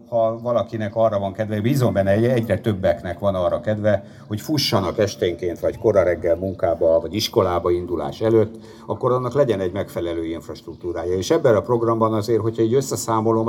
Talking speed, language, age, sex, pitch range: 160 wpm, Hungarian, 60-79, male, 90-115 Hz